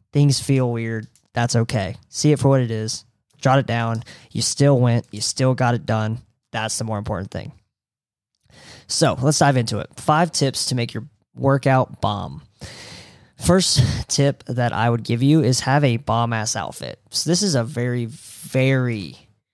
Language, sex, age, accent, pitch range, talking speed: English, male, 20-39, American, 115-135 Hz, 180 wpm